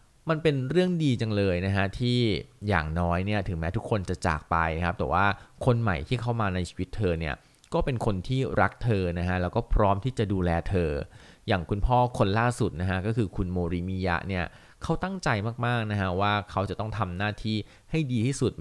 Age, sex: 20-39, male